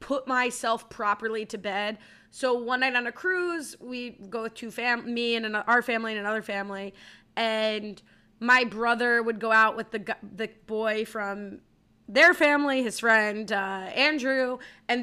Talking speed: 170 wpm